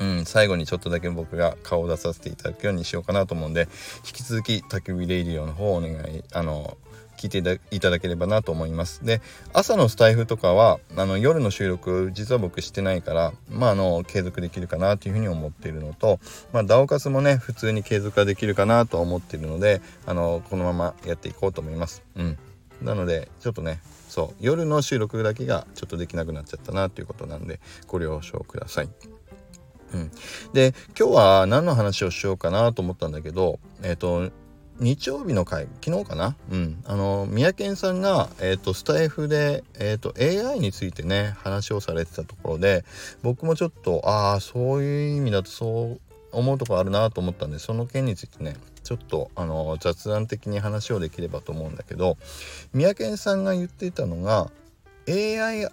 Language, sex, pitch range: Japanese, male, 85-115 Hz